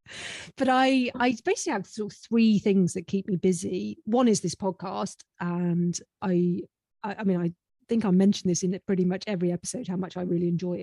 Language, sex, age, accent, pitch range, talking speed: English, female, 40-59, British, 175-200 Hz, 210 wpm